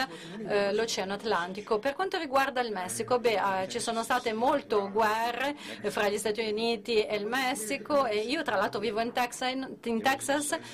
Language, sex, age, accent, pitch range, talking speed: Italian, female, 30-49, native, 200-250 Hz, 160 wpm